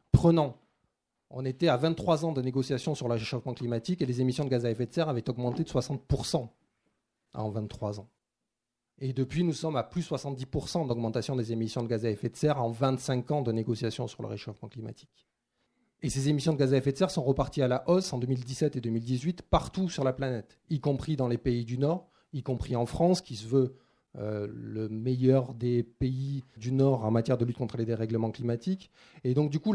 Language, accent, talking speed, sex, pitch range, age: French, French, 220 wpm, male, 125-150 Hz, 30-49